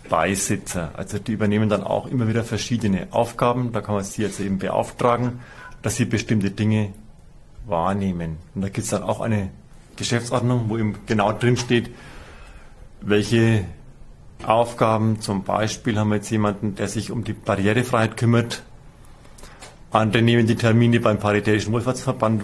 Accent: German